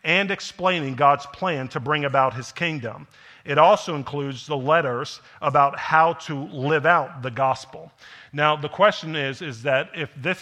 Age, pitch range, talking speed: 50-69, 120-150 Hz, 165 wpm